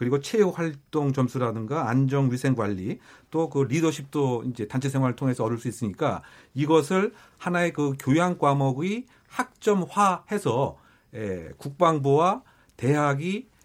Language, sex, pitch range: Korean, male, 130-170 Hz